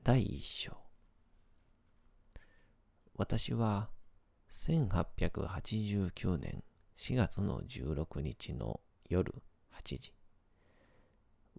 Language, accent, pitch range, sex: Japanese, native, 85-105 Hz, male